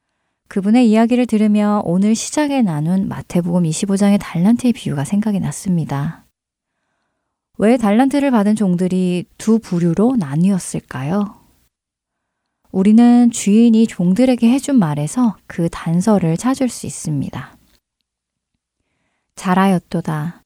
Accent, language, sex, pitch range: native, Korean, female, 170-230 Hz